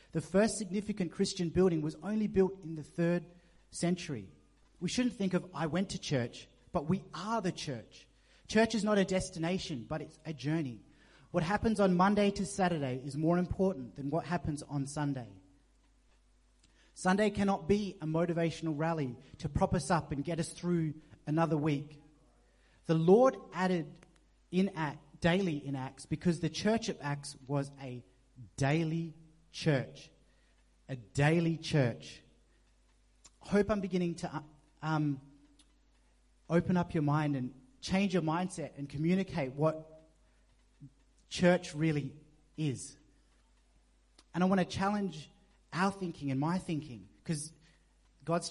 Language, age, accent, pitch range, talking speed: English, 30-49, Australian, 140-180 Hz, 140 wpm